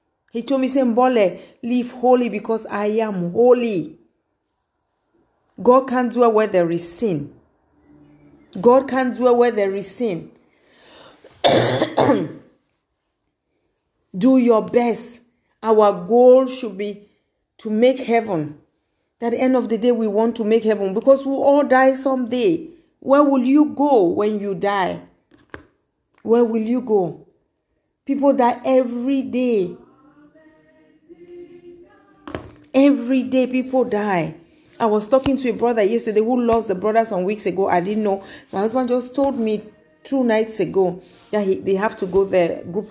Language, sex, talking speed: English, female, 140 wpm